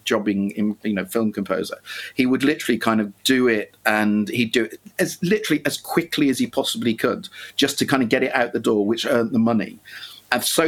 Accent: British